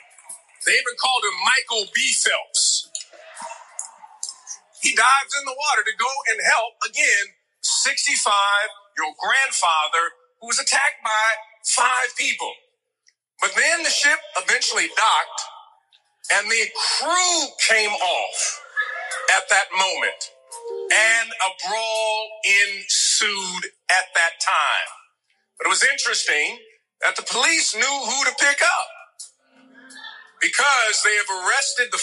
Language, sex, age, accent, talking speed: English, male, 50-69, American, 120 wpm